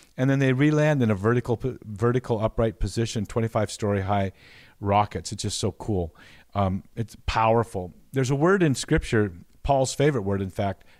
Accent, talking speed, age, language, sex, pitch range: American, 165 wpm, 50-69, English, male, 100-125 Hz